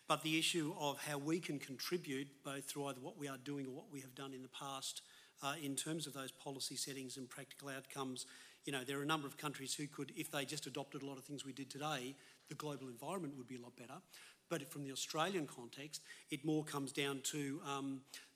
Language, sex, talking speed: English, male, 240 wpm